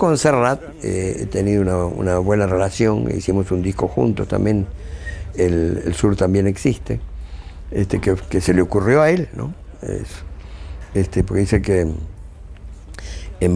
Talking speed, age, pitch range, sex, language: 145 wpm, 60-79, 80-110 Hz, male, Spanish